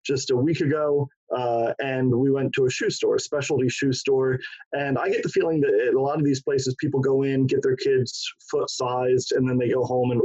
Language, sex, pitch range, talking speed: English, male, 130-160 Hz, 240 wpm